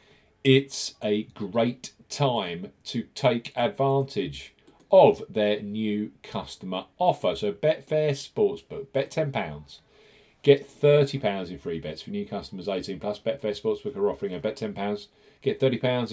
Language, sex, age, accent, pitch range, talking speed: English, male, 40-59, British, 100-140 Hz, 135 wpm